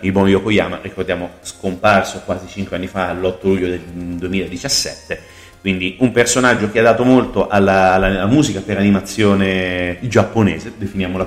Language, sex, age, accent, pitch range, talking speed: Italian, male, 30-49, native, 90-110 Hz, 140 wpm